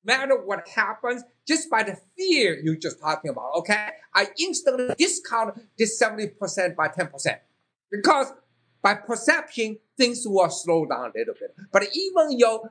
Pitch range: 195-275 Hz